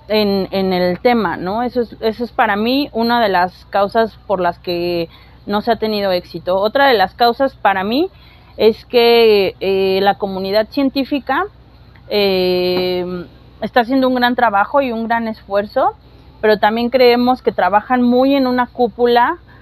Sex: female